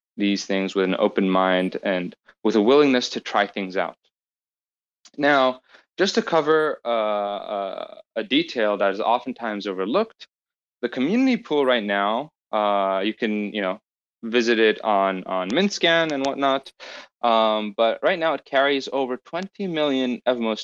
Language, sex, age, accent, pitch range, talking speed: English, male, 20-39, American, 100-150 Hz, 145 wpm